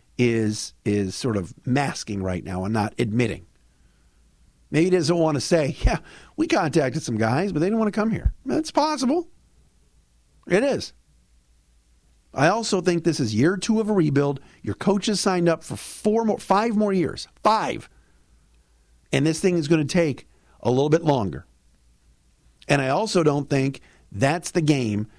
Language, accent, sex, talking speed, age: English, American, male, 175 wpm, 50-69